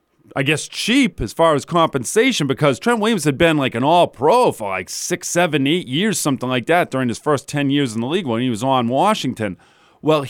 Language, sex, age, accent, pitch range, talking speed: English, male, 40-59, American, 140-180 Hz, 220 wpm